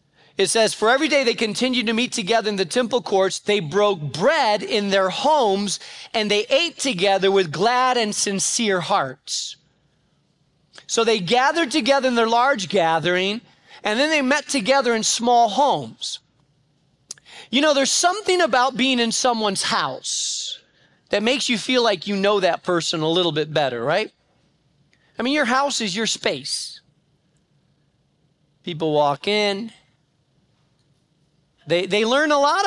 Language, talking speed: English, 150 wpm